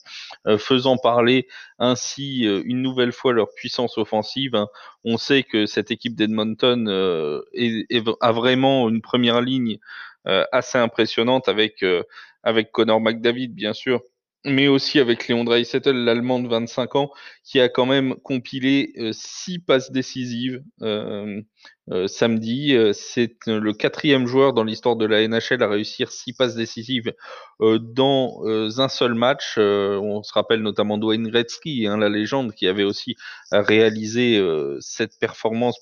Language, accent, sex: French, French, male